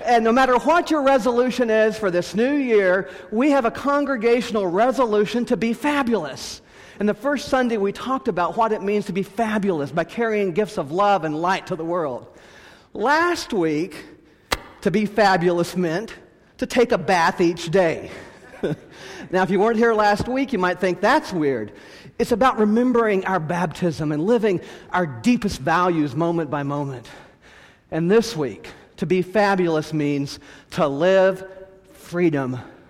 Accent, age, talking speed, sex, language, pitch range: American, 40-59, 160 wpm, male, English, 175-225 Hz